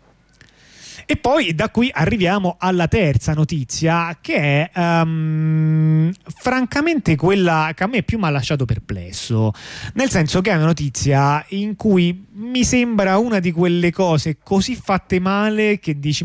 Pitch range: 140-190 Hz